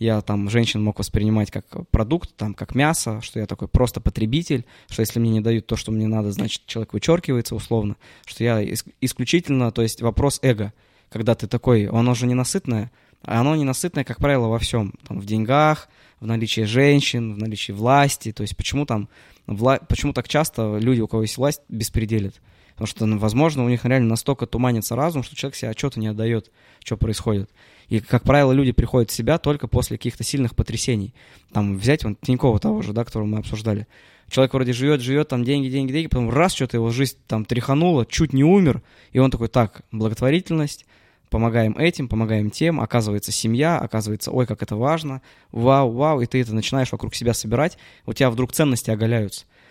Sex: male